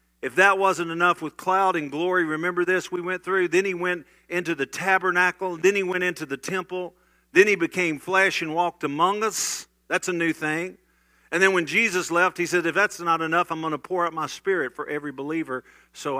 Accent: American